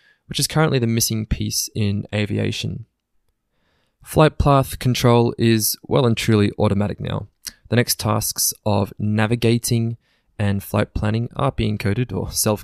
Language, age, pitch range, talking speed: English, 20-39, 105-120 Hz, 140 wpm